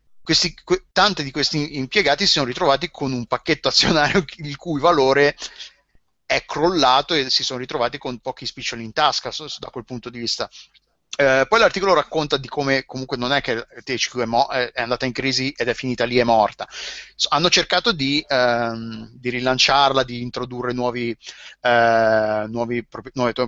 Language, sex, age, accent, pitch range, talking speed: Italian, male, 30-49, native, 125-150 Hz, 175 wpm